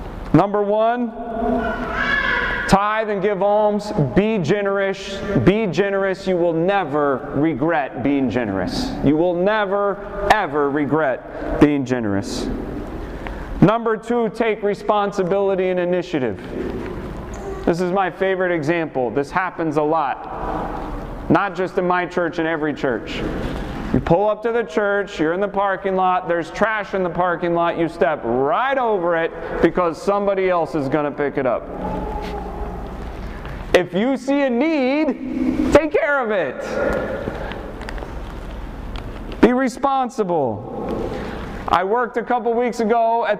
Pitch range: 170-220 Hz